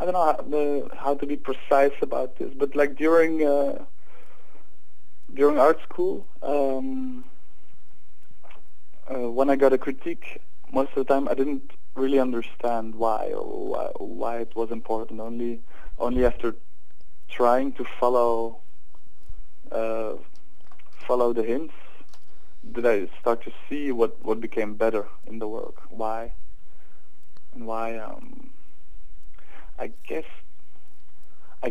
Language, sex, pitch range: English, male, 115-140 Hz